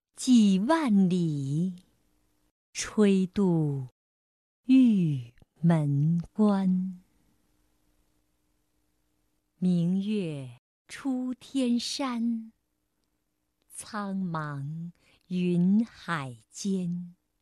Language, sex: Chinese, female